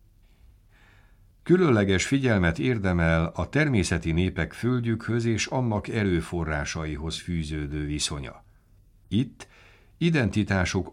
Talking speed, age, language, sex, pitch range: 75 wpm, 60-79, Hungarian, male, 80-105 Hz